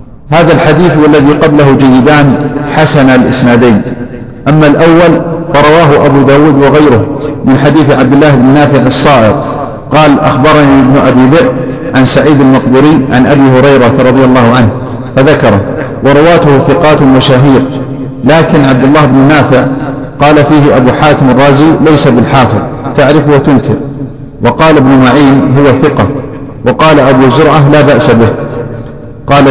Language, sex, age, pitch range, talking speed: Arabic, male, 50-69, 130-145 Hz, 130 wpm